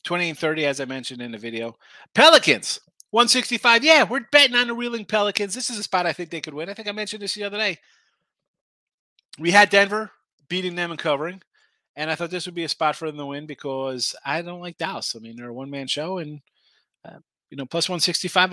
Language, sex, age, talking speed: English, male, 30-49, 230 wpm